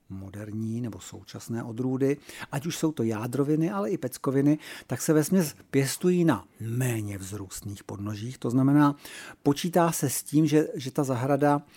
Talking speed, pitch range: 160 wpm, 130-170 Hz